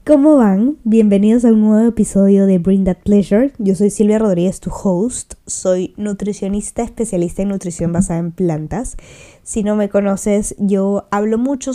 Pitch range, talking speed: 185-215 Hz, 165 wpm